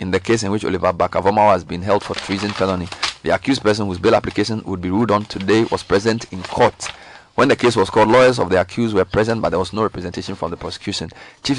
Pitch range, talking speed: 95-115 Hz, 250 wpm